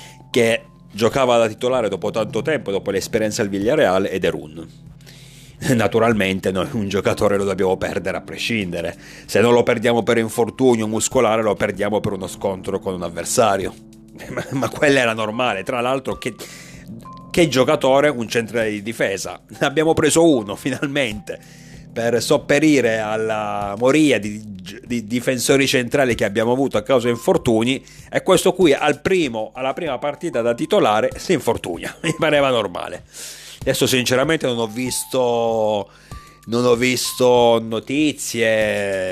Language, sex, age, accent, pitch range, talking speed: Italian, male, 40-59, native, 105-130 Hz, 150 wpm